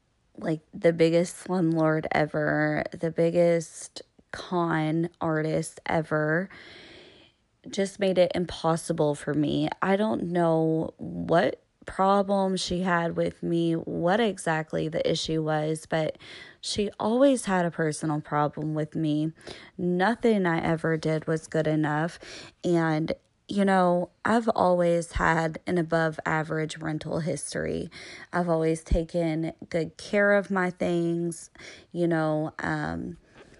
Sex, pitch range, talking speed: female, 160-180 Hz, 120 wpm